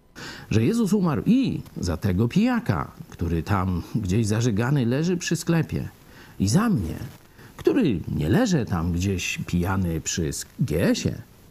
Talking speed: 135 wpm